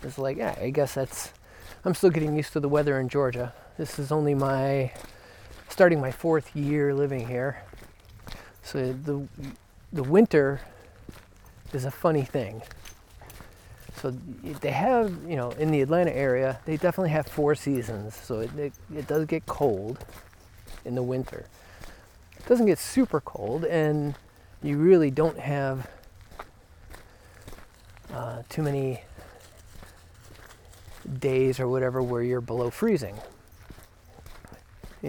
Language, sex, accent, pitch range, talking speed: English, male, American, 105-150 Hz, 135 wpm